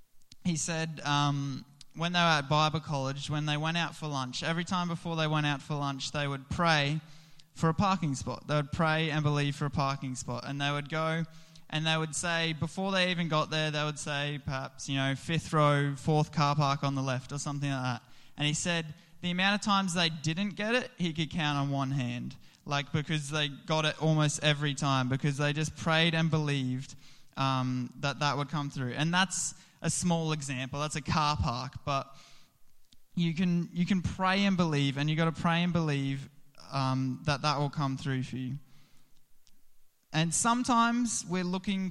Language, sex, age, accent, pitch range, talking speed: English, male, 10-29, Australian, 140-165 Hz, 205 wpm